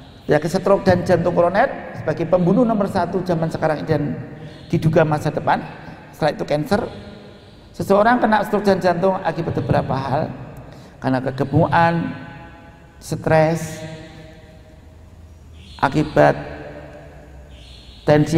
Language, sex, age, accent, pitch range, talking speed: Indonesian, male, 50-69, native, 145-195 Hz, 105 wpm